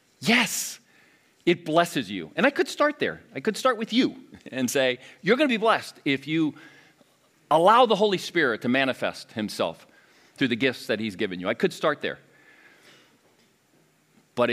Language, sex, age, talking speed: English, male, 40-59, 175 wpm